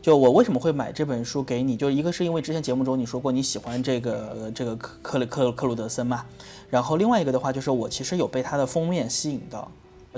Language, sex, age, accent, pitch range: Chinese, male, 20-39, native, 125-165 Hz